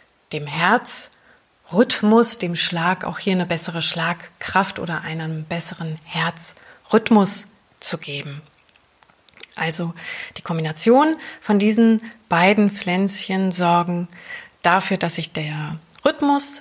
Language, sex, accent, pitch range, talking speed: German, female, German, 170-215 Hz, 100 wpm